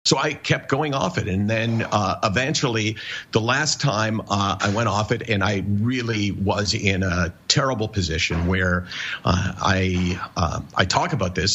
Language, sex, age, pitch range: English, male, 50-69, 100-120 Hz